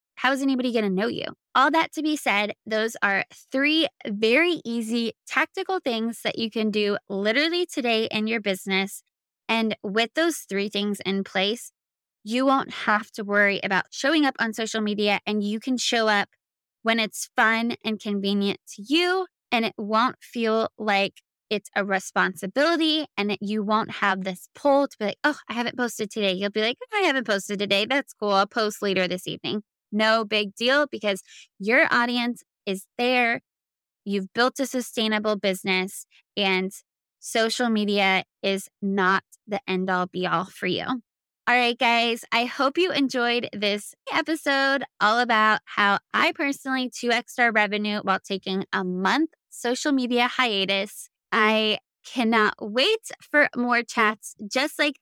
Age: 20-39